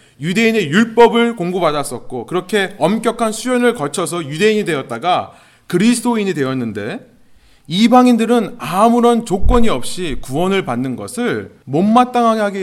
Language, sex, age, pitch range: Korean, male, 30-49, 140-230 Hz